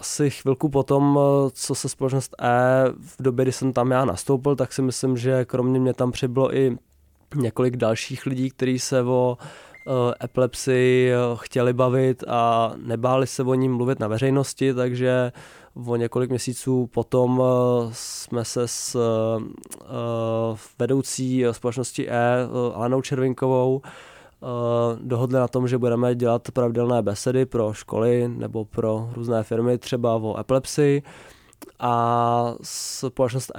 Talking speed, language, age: 130 wpm, Czech, 20-39